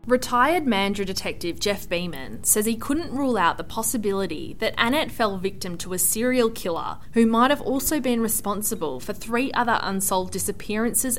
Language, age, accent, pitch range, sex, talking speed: English, 20-39, Australian, 185-240 Hz, female, 165 wpm